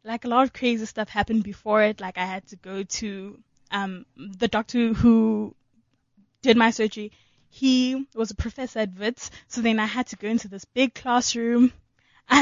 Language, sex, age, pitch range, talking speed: English, female, 20-39, 210-255 Hz, 190 wpm